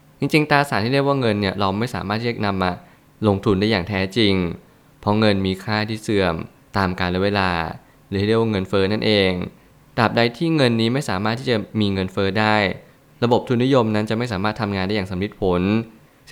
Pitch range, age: 100-120 Hz, 20-39